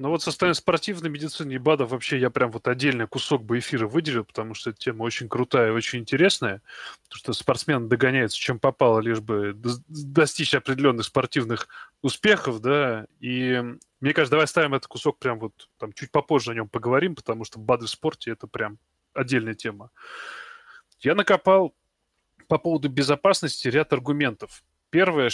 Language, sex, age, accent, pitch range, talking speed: Russian, male, 20-39, native, 120-155 Hz, 175 wpm